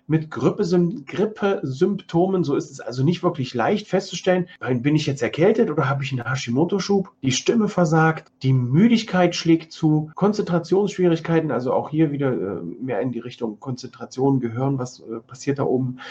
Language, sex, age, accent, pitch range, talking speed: German, male, 40-59, German, 135-180 Hz, 155 wpm